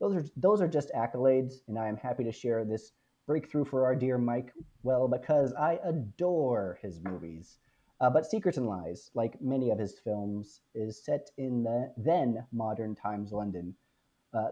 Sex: male